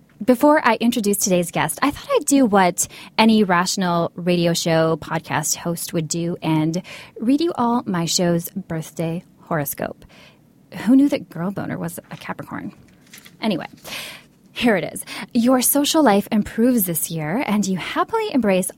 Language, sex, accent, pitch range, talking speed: English, female, American, 170-255 Hz, 155 wpm